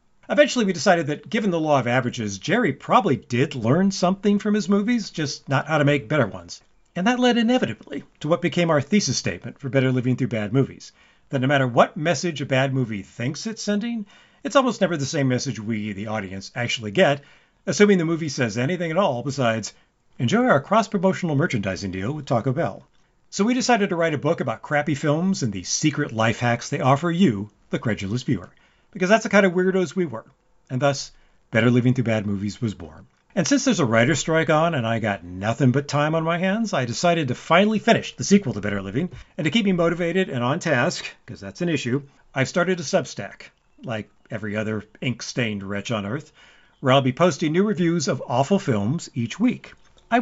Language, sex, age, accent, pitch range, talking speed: English, male, 50-69, American, 120-185 Hz, 210 wpm